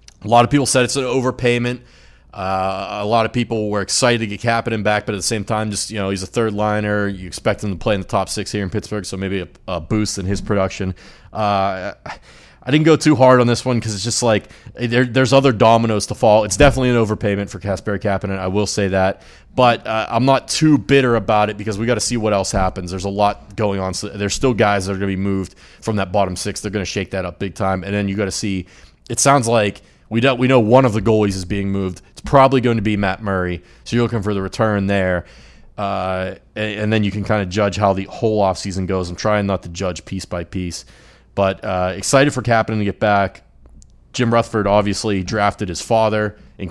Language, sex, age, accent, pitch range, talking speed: English, male, 30-49, American, 95-110 Hz, 245 wpm